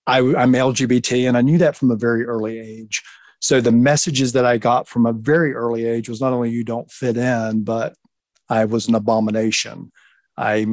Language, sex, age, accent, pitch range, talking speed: English, male, 40-59, American, 115-130 Hz, 200 wpm